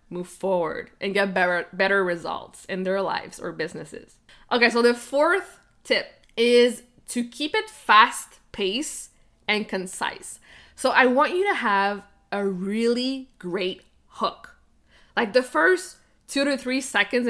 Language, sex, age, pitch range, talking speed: English, female, 20-39, 195-250 Hz, 140 wpm